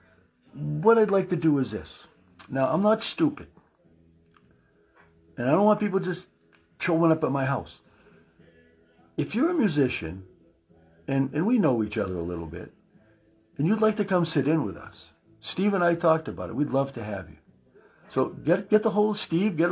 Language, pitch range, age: English, 110-175 Hz, 60-79